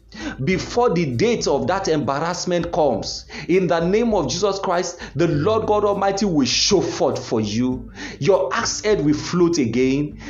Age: 40-59